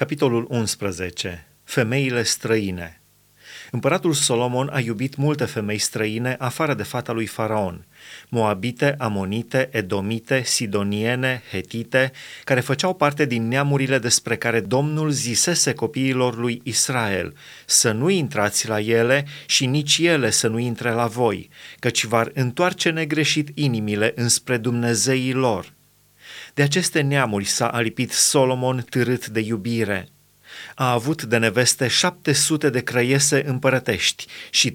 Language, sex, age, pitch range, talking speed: Romanian, male, 30-49, 115-140 Hz, 125 wpm